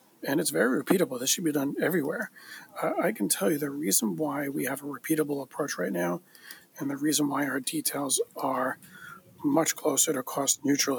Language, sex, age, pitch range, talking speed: English, male, 40-59, 140-160 Hz, 190 wpm